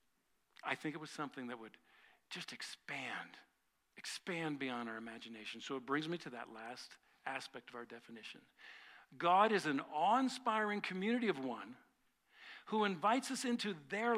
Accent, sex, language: American, male, English